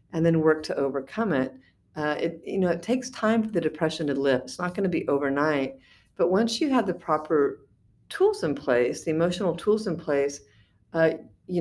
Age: 50-69